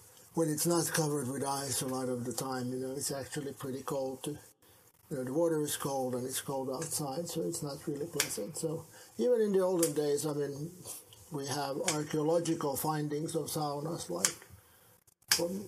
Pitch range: 130-165 Hz